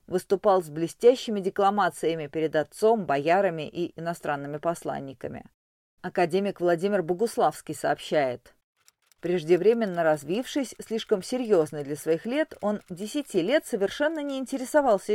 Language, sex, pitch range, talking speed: Russian, female, 170-215 Hz, 105 wpm